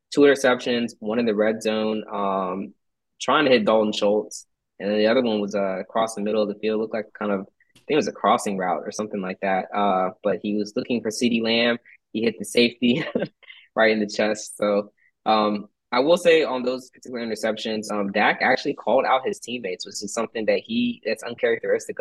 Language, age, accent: English, 20-39, American